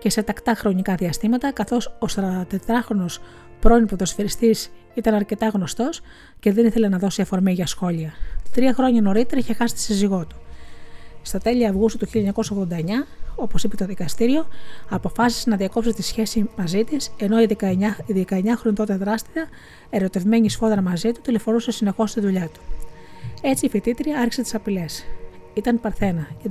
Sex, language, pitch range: female, Greek, 180-230 Hz